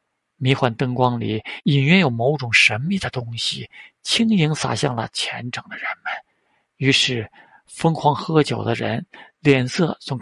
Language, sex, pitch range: Chinese, male, 125-150 Hz